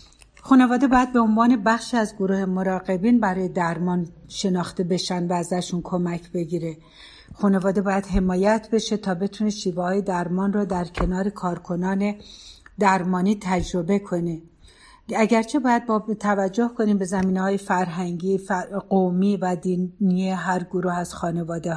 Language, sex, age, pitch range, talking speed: Persian, female, 60-79, 180-215 Hz, 130 wpm